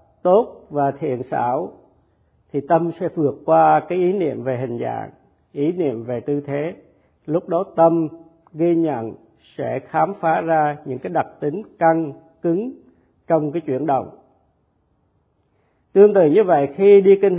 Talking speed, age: 160 wpm, 50-69